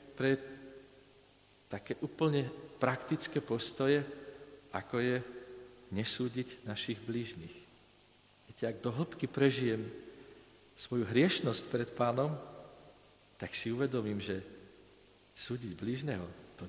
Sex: male